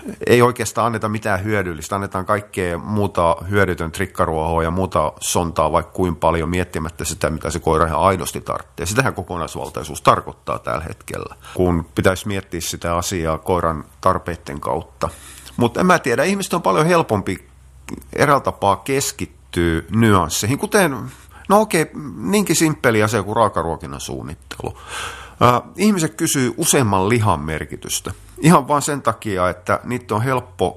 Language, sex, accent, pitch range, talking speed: Finnish, male, native, 85-115 Hz, 135 wpm